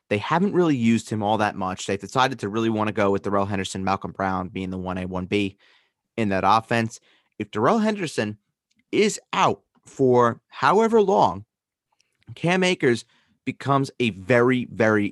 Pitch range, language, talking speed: 100-140 Hz, English, 165 wpm